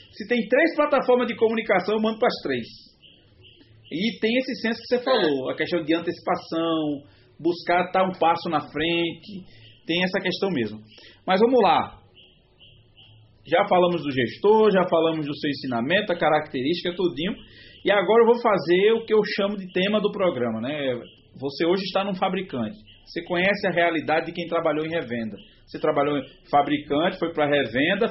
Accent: Brazilian